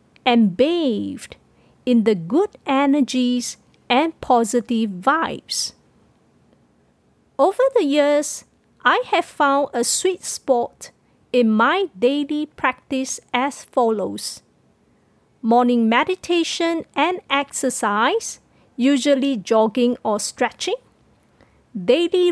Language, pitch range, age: English, 240-315 Hz, 50-69